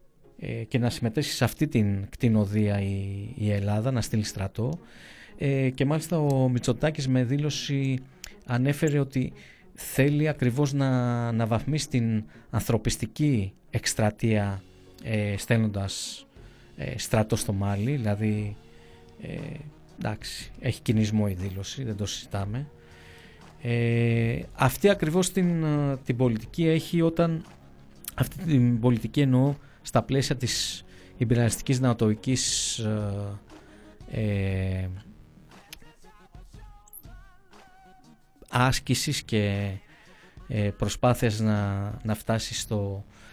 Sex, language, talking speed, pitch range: male, Greek, 90 wpm, 105-135 Hz